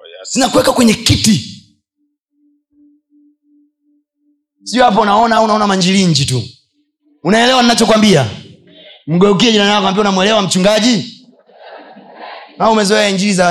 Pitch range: 155-250 Hz